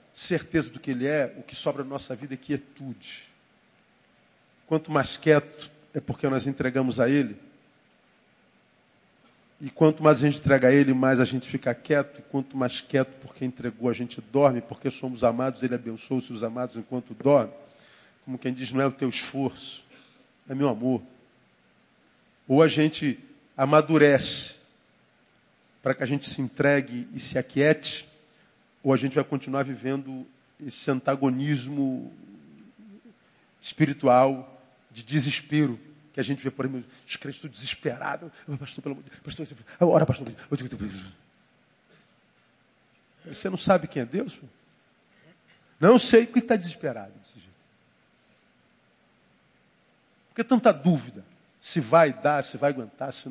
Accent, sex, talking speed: Brazilian, male, 135 wpm